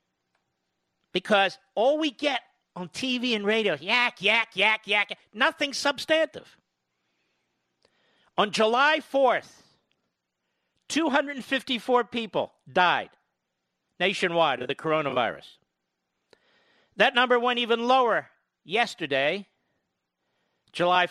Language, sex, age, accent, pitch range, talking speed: English, male, 50-69, American, 190-245 Hz, 90 wpm